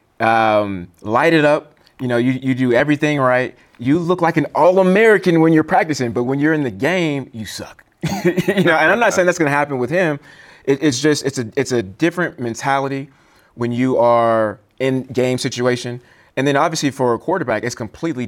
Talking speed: 205 wpm